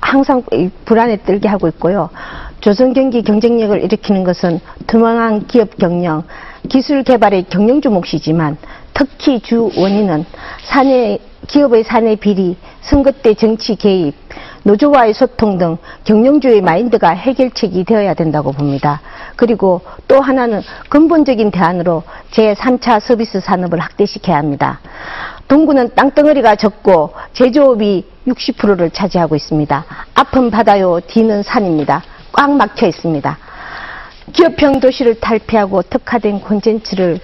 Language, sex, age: Korean, female, 50-69